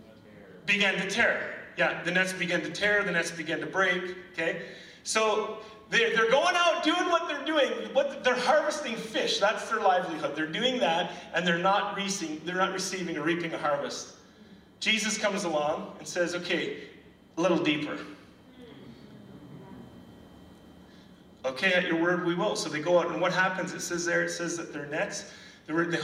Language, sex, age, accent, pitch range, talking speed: English, male, 30-49, American, 170-215 Hz, 175 wpm